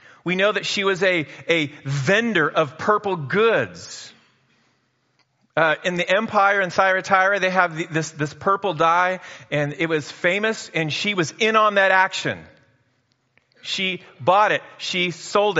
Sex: male